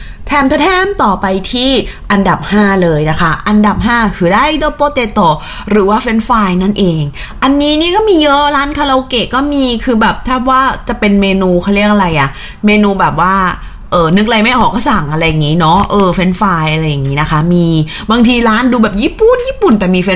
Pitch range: 175-250 Hz